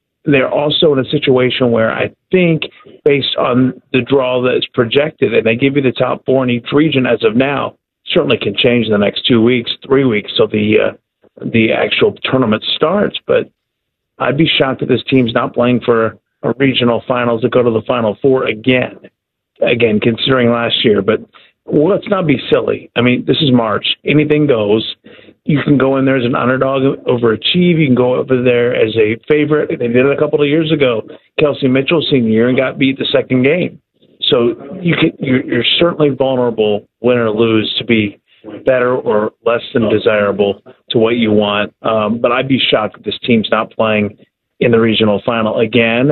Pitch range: 115-145 Hz